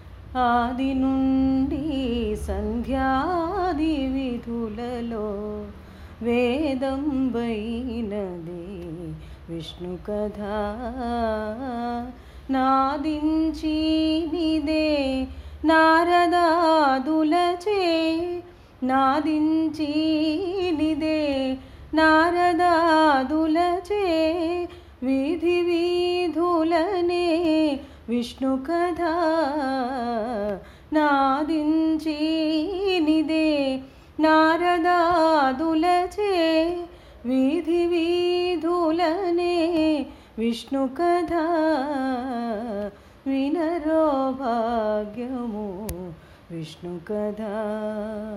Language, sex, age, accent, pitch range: Telugu, female, 30-49, native, 240-330 Hz